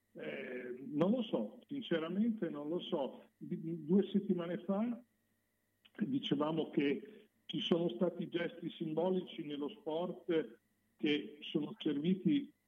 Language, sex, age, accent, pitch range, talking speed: Italian, male, 50-69, native, 135-205 Hz, 105 wpm